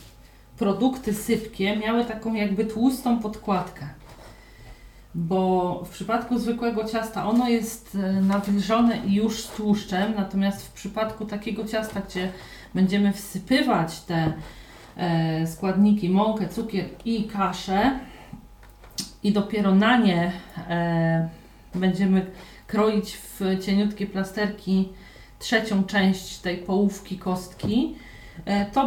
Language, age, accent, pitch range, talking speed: Polish, 40-59, native, 185-215 Hz, 100 wpm